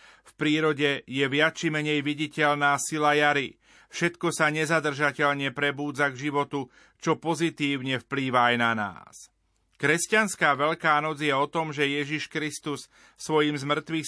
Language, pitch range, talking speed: Slovak, 140-160 Hz, 130 wpm